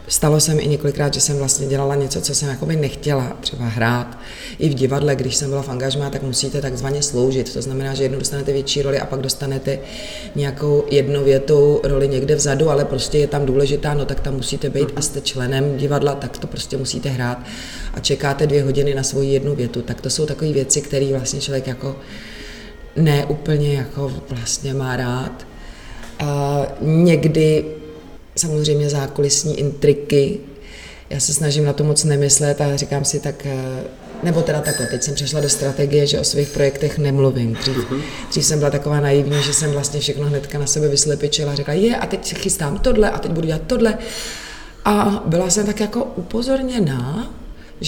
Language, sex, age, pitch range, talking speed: Czech, female, 30-49, 135-150 Hz, 180 wpm